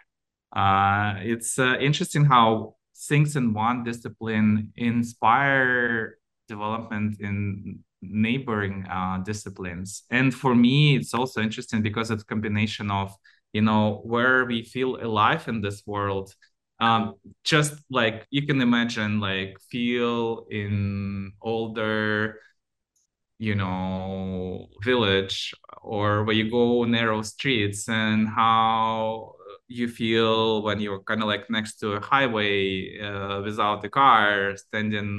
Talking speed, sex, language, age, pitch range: 125 wpm, male, English, 20-39, 105-120 Hz